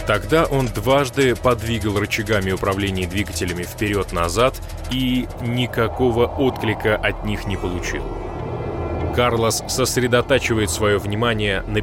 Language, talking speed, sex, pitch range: Russian, 100 wpm, male, 100-130 Hz